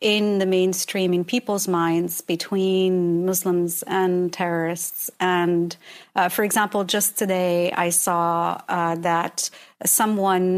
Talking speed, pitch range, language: 120 wpm, 180-210 Hz, English